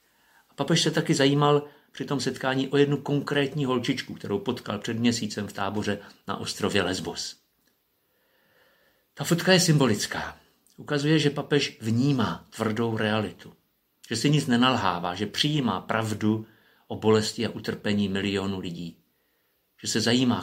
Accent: native